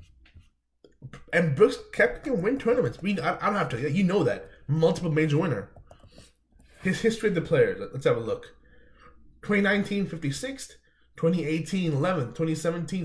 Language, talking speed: English, 145 wpm